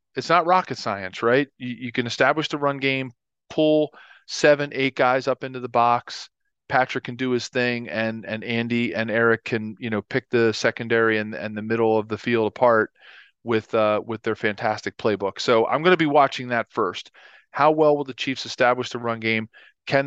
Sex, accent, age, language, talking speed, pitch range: male, American, 40-59, English, 205 wpm, 110-130 Hz